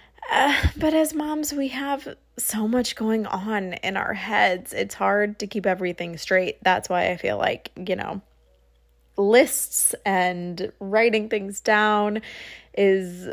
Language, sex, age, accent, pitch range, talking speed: English, female, 20-39, American, 175-225 Hz, 145 wpm